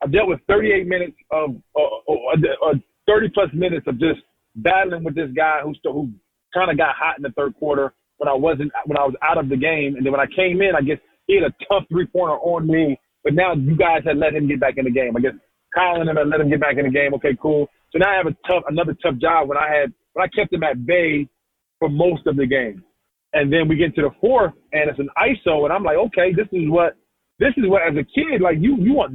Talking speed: 280 wpm